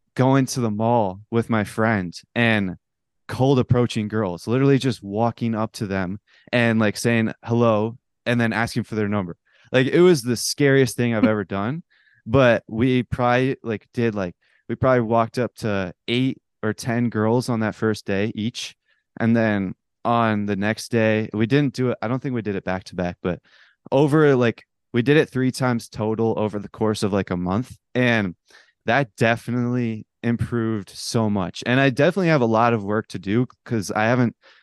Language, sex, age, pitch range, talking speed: English, male, 20-39, 105-125 Hz, 190 wpm